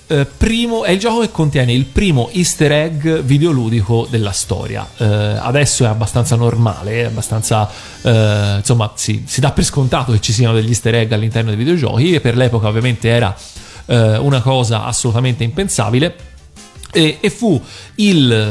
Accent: native